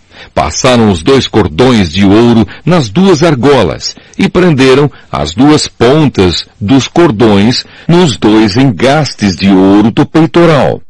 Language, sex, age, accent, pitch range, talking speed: Portuguese, male, 60-79, Brazilian, 100-145 Hz, 125 wpm